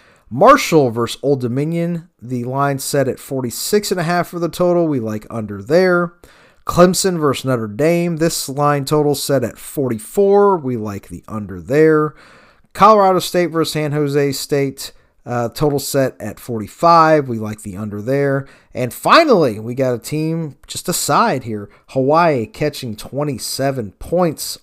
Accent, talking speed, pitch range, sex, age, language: American, 145 wpm, 115-165 Hz, male, 30-49, English